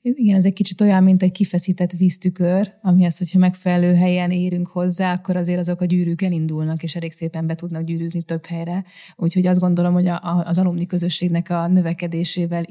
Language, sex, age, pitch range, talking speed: Hungarian, female, 20-39, 165-185 Hz, 190 wpm